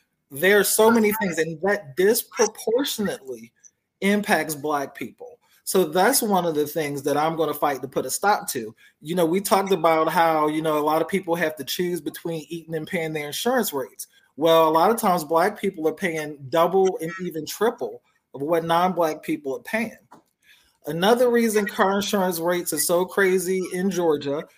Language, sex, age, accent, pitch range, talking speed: English, male, 30-49, American, 155-195 Hz, 190 wpm